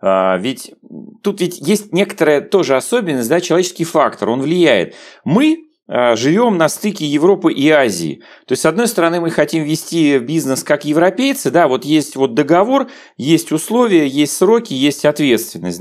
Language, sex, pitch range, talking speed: Russian, male, 145-210 Hz, 155 wpm